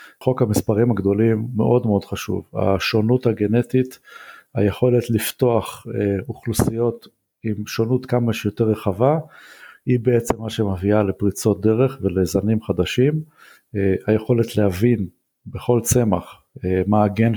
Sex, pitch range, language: male, 105-125 Hz, Hebrew